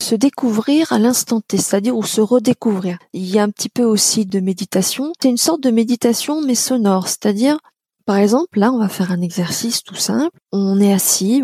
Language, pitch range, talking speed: French, 195-260 Hz, 205 wpm